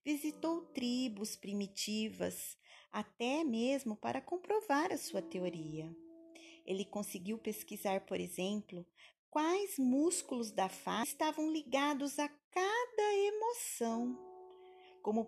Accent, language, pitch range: Brazilian, Portuguese, 190-290 Hz